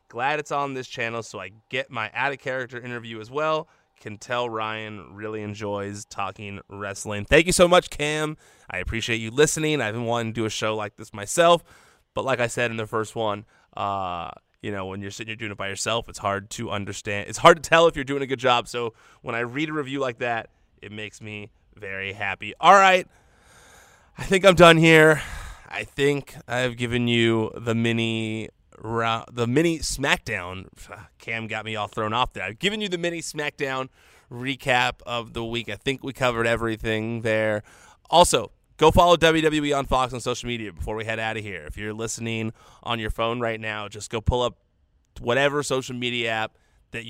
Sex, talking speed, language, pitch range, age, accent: male, 200 wpm, English, 105-130 Hz, 20-39, American